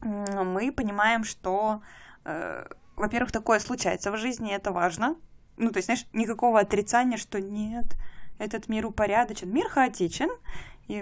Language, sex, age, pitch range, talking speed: Russian, female, 20-39, 195-235 Hz, 135 wpm